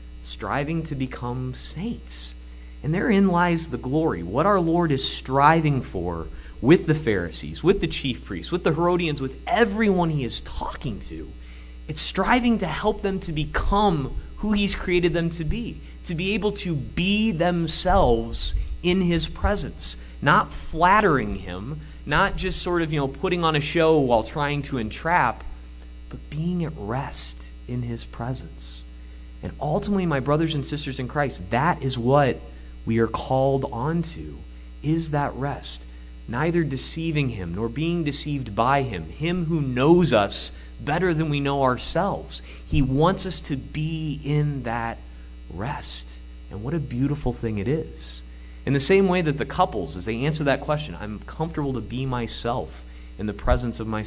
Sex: male